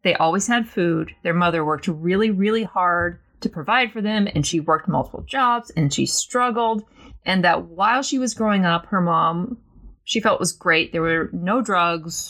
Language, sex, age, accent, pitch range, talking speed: English, female, 30-49, American, 155-205 Hz, 190 wpm